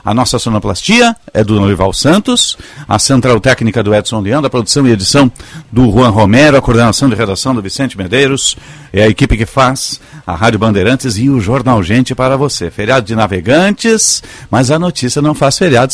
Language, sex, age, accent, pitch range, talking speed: Portuguese, male, 50-69, Brazilian, 110-135 Hz, 190 wpm